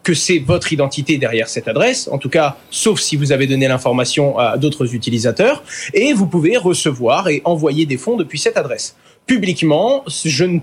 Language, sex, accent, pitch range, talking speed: French, male, French, 150-220 Hz, 185 wpm